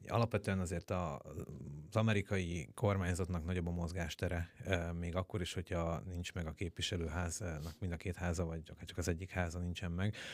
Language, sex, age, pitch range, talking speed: Hungarian, male, 30-49, 85-100 Hz, 170 wpm